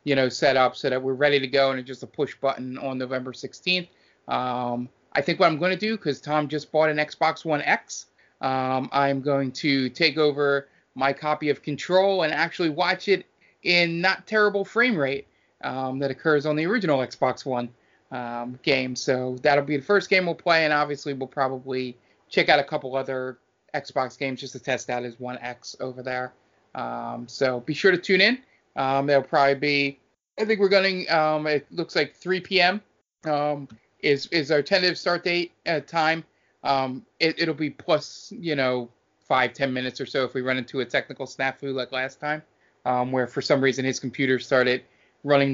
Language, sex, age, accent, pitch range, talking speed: English, male, 30-49, American, 130-155 Hz, 200 wpm